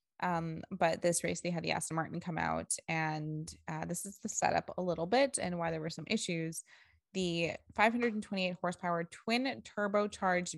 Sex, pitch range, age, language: female, 160-200 Hz, 20-39, English